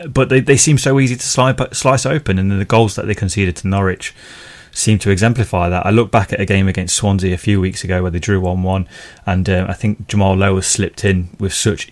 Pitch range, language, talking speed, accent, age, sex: 90-110 Hz, English, 235 wpm, British, 20-39, male